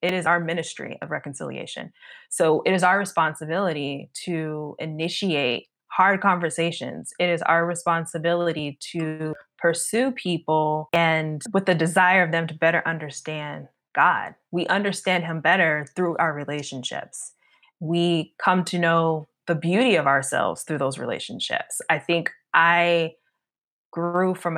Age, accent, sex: 20-39, American, female